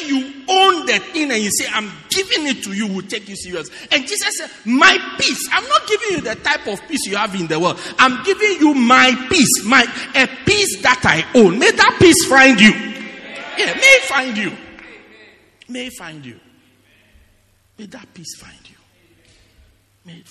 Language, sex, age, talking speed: English, male, 50-69, 200 wpm